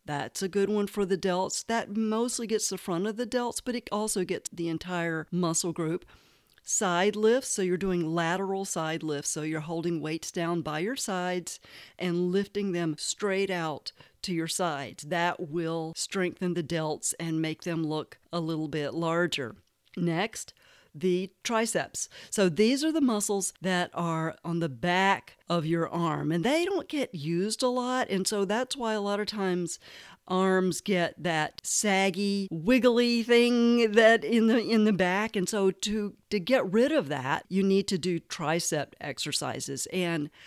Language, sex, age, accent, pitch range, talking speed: English, female, 40-59, American, 165-215 Hz, 175 wpm